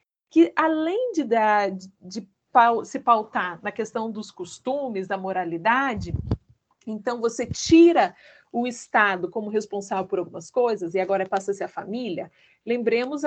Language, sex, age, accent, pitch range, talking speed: Portuguese, female, 40-59, Brazilian, 215-295 Hz, 140 wpm